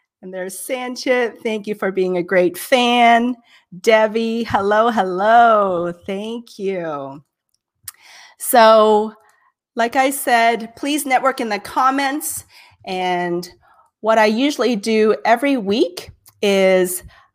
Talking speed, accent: 110 wpm, American